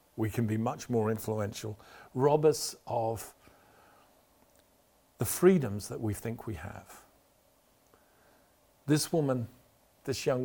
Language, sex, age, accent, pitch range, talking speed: English, male, 50-69, British, 105-135 Hz, 115 wpm